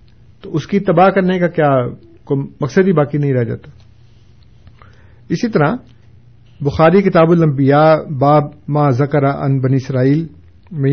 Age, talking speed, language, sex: 50-69, 135 wpm, Urdu, male